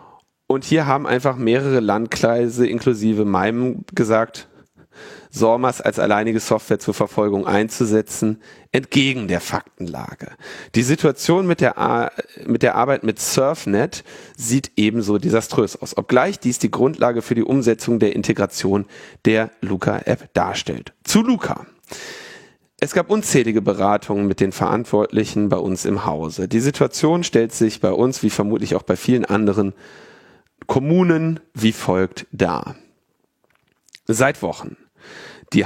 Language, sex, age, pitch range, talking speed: German, male, 40-59, 110-145 Hz, 130 wpm